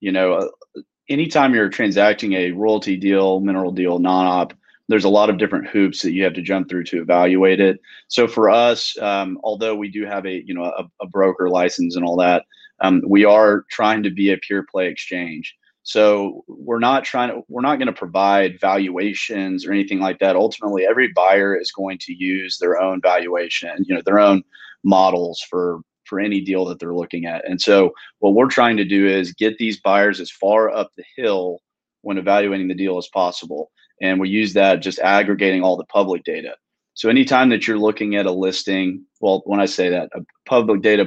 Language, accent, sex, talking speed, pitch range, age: English, American, male, 205 wpm, 95-105 Hz, 30-49